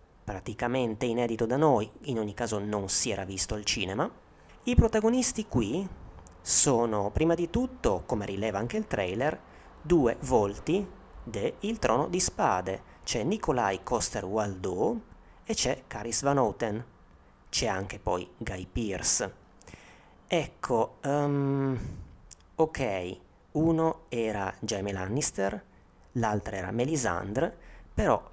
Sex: male